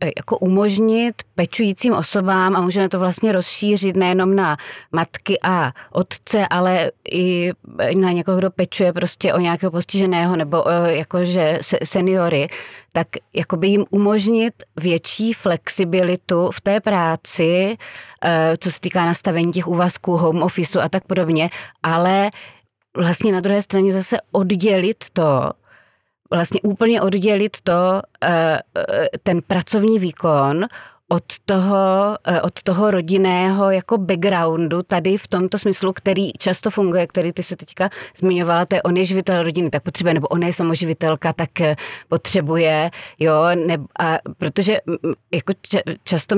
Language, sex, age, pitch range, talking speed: Czech, female, 30-49, 170-195 Hz, 130 wpm